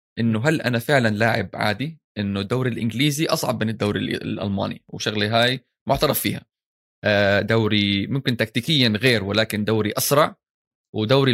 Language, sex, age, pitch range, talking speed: Arabic, male, 20-39, 110-145 Hz, 130 wpm